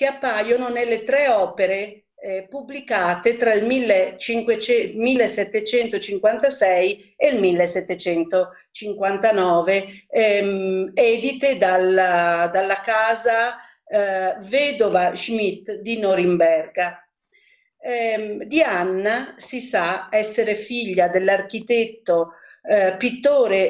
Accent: native